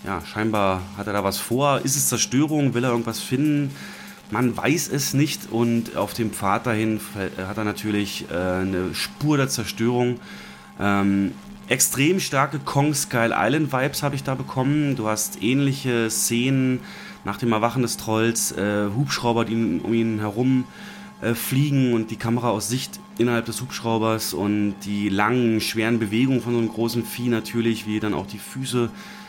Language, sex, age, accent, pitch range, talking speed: German, male, 30-49, German, 110-125 Hz, 170 wpm